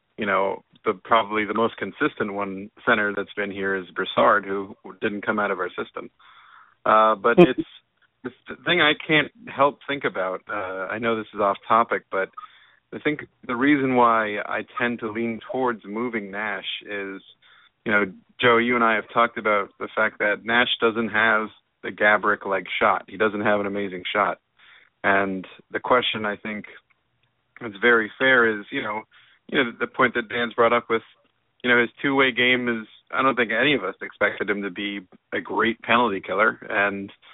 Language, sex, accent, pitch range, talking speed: English, male, American, 100-120 Hz, 190 wpm